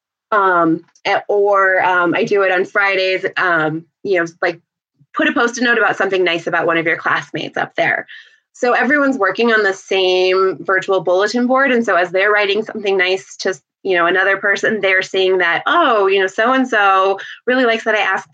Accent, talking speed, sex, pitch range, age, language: American, 195 wpm, female, 175-205 Hz, 20-39, English